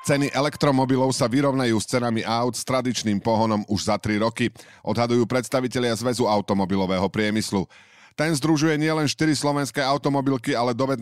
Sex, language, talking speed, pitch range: male, Slovak, 150 wpm, 105-140 Hz